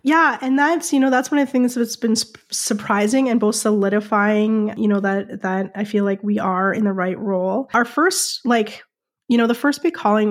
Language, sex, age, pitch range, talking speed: English, female, 20-39, 200-230 Hz, 220 wpm